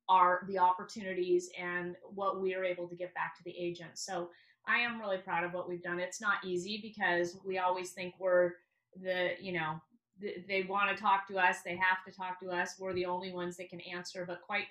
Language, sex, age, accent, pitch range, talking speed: English, female, 30-49, American, 175-195 Hz, 230 wpm